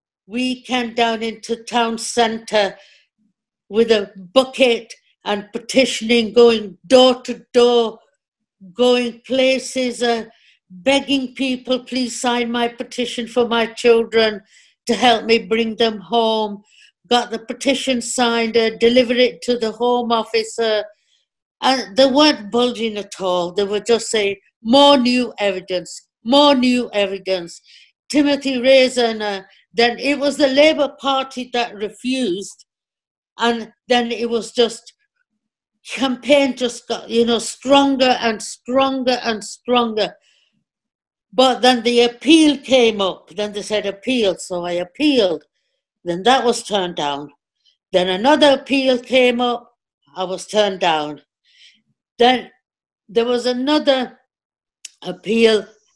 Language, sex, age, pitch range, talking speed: English, female, 60-79, 215-255 Hz, 125 wpm